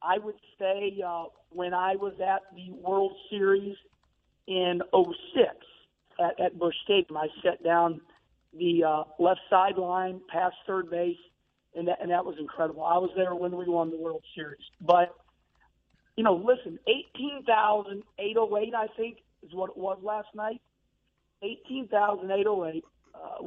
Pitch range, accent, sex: 175-225 Hz, American, male